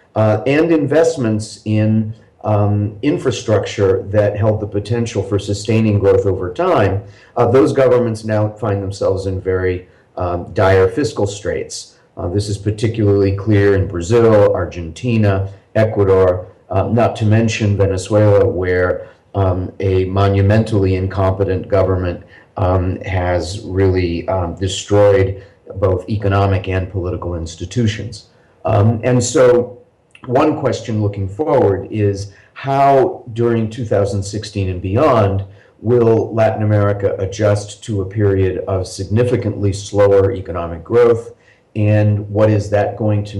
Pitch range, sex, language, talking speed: 95-115 Hz, male, English, 120 wpm